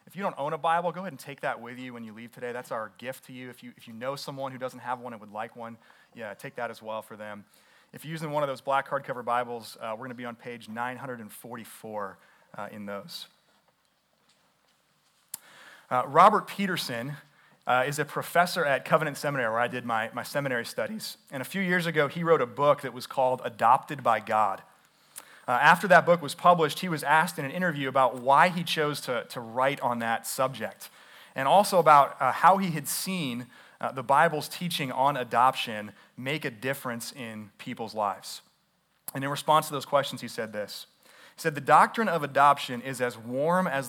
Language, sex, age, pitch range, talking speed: English, male, 30-49, 120-155 Hz, 210 wpm